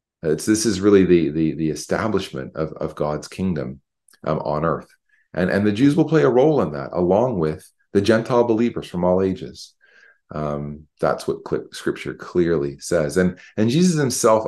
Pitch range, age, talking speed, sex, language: 85-105 Hz, 40-59, 180 wpm, male, English